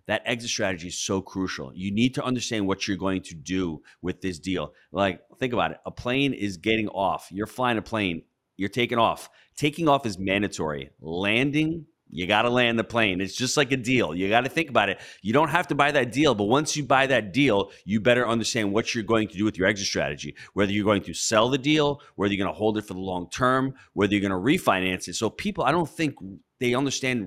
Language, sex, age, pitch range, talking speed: English, male, 30-49, 95-125 Hz, 235 wpm